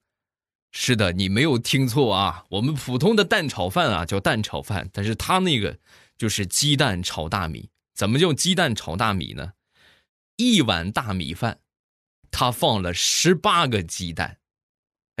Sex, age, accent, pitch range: male, 20-39, native, 90-135 Hz